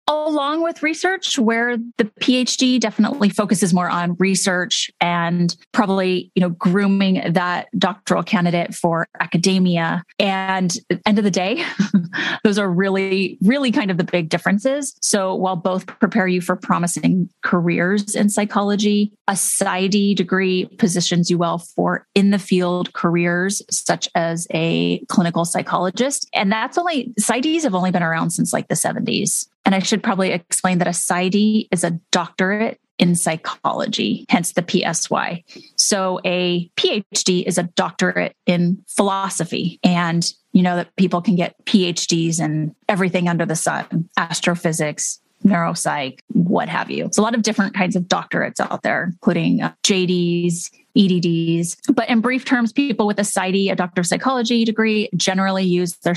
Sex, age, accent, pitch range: female, 30-49, American, 175-220 Hz